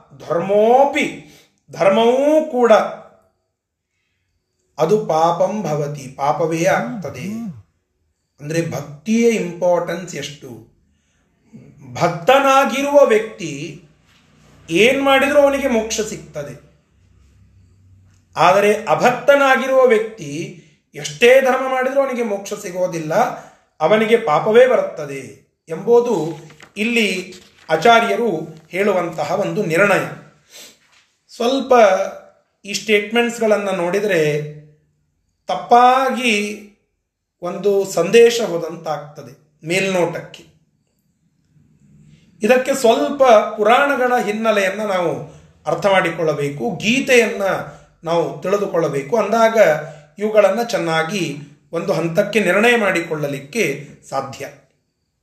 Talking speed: 70 wpm